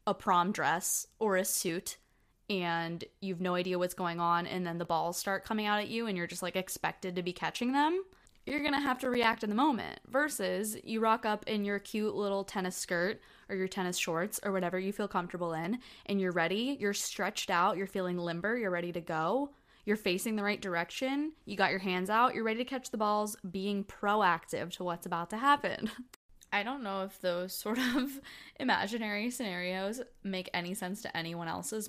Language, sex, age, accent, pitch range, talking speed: English, female, 20-39, American, 180-230 Hz, 205 wpm